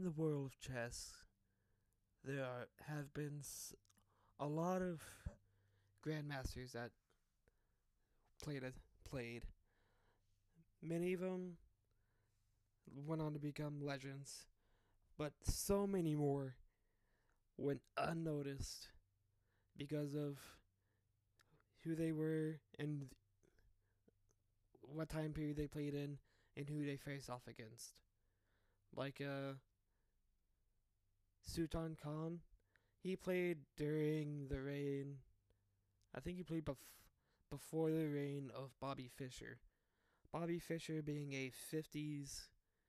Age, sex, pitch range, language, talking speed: 20-39, male, 105-150 Hz, English, 100 wpm